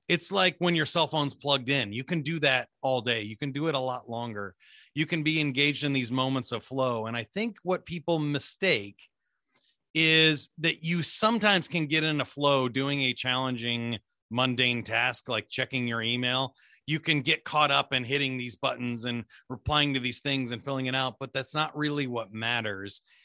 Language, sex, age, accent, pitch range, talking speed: English, male, 30-49, American, 125-155 Hz, 200 wpm